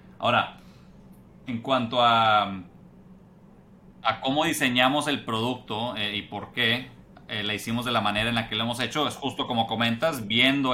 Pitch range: 110-125 Hz